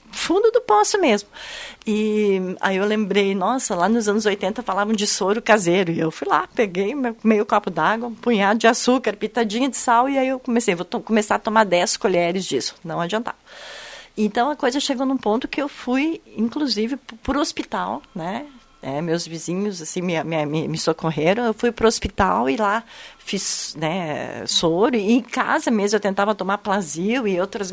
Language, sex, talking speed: Portuguese, female, 190 wpm